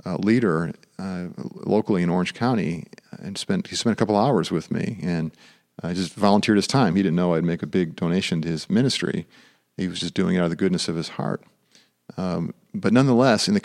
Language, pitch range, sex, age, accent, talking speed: English, 95-130 Hz, male, 40-59, American, 220 wpm